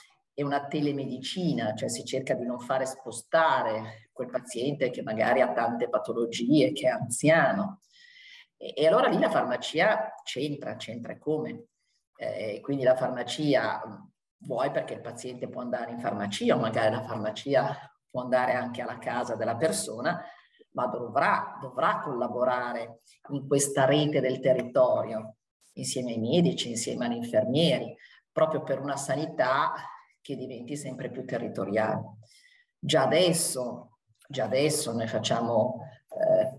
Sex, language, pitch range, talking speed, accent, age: male, Italian, 120-145 Hz, 135 wpm, native, 40-59